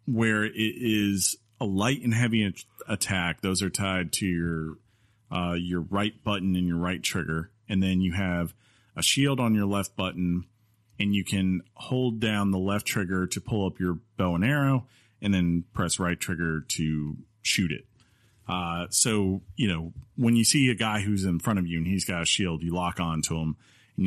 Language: English